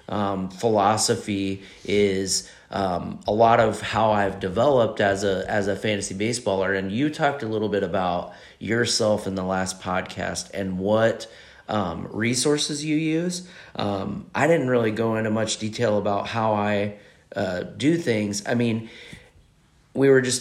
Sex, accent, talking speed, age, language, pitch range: male, American, 155 wpm, 30-49, English, 100-125 Hz